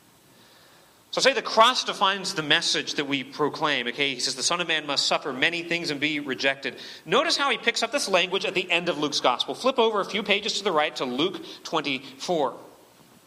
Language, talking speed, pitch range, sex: English, 215 wpm, 150-220 Hz, male